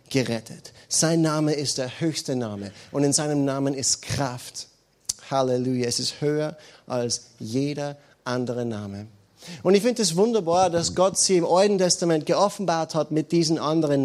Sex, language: male, German